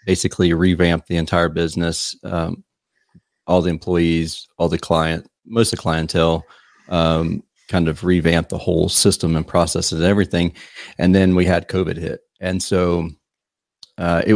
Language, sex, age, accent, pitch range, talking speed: English, male, 40-59, American, 85-100 Hz, 155 wpm